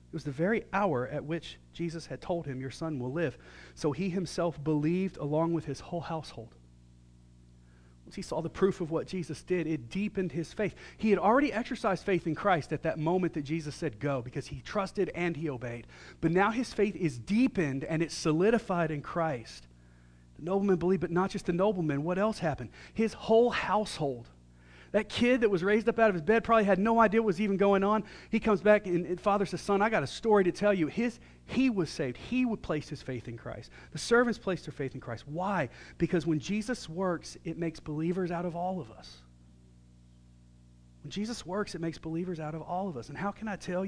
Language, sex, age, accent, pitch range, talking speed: English, male, 40-59, American, 145-195 Hz, 220 wpm